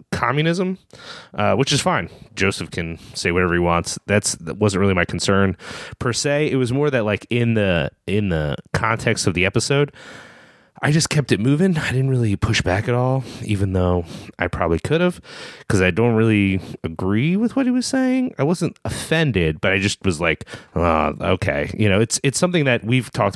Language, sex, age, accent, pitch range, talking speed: English, male, 30-49, American, 90-125 Hz, 200 wpm